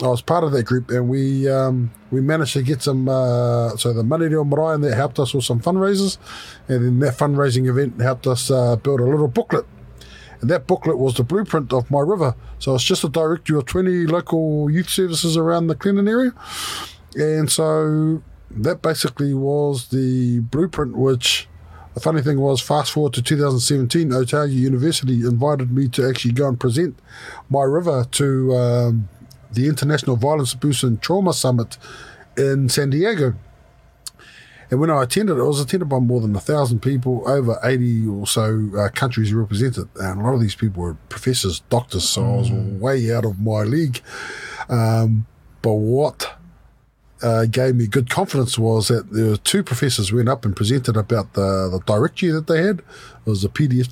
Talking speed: 190 wpm